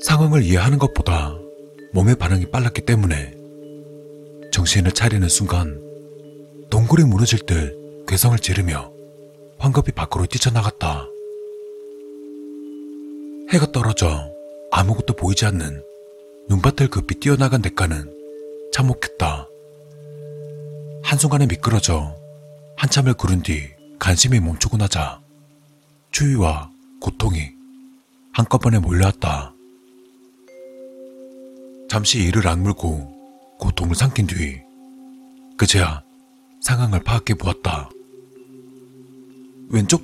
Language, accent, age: Korean, native, 40-59